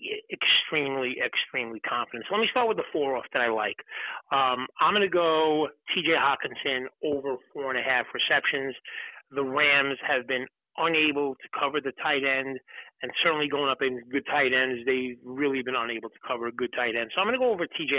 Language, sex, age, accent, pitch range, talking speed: English, male, 30-49, American, 125-160 Hz, 210 wpm